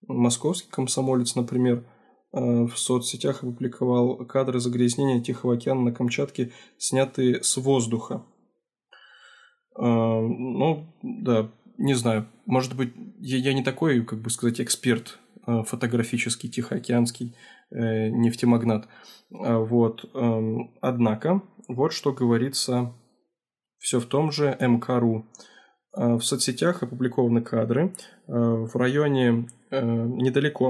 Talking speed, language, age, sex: 90 wpm, Russian, 20-39, male